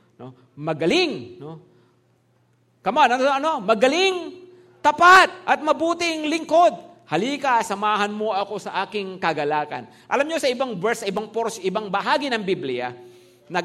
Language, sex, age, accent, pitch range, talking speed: English, male, 50-69, Filipino, 165-245 Hz, 135 wpm